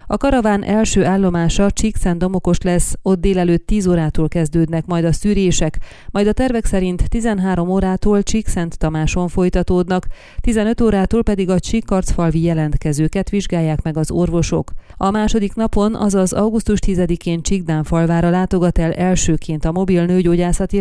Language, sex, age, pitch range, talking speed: Hungarian, female, 30-49, 170-200 Hz, 135 wpm